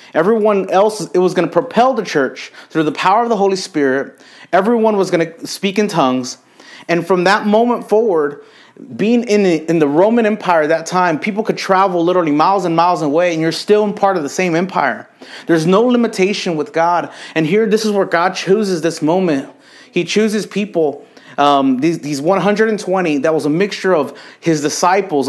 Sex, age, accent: male, 30-49, American